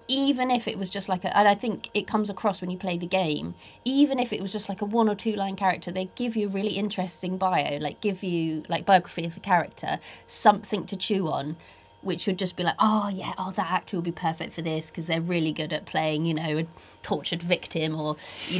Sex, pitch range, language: female, 155-195 Hz, English